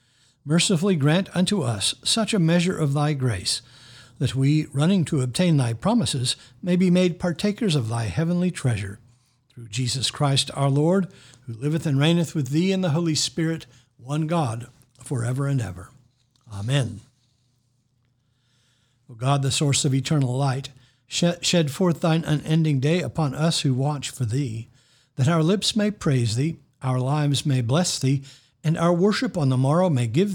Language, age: English, 60-79